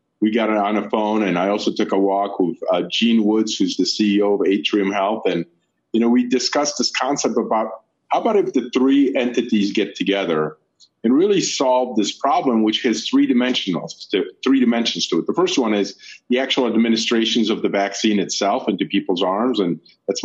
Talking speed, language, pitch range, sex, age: 200 wpm, English, 100-125 Hz, male, 40-59